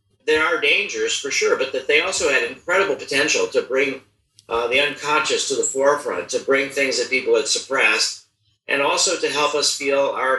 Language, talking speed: English, 195 wpm